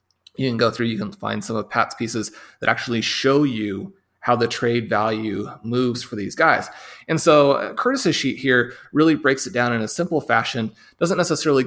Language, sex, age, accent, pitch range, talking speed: English, male, 30-49, American, 115-145 Hz, 195 wpm